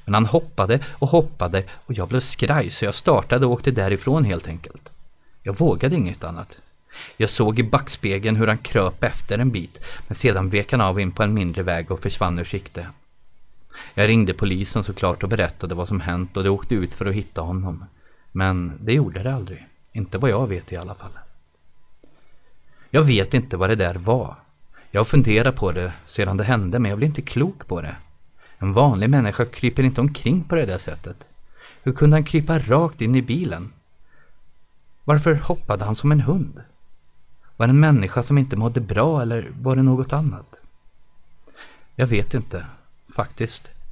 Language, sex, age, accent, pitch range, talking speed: Swedish, male, 30-49, native, 95-130 Hz, 185 wpm